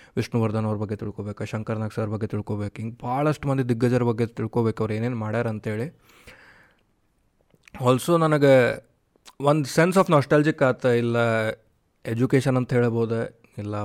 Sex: male